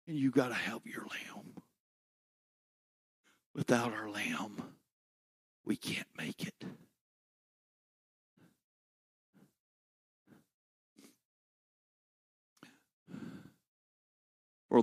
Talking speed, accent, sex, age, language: 60 wpm, American, male, 60-79, English